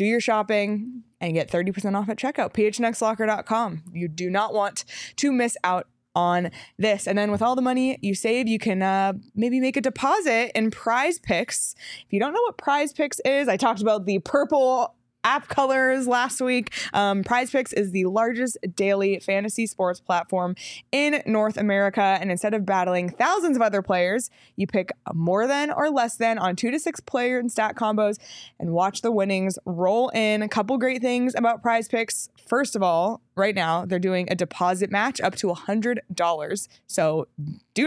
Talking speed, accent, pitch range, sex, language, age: 185 wpm, American, 185-245 Hz, female, English, 20-39